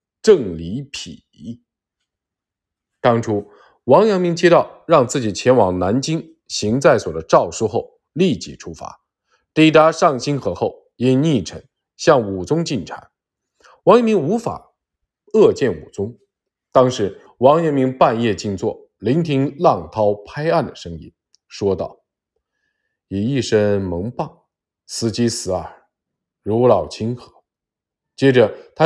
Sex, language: male, Chinese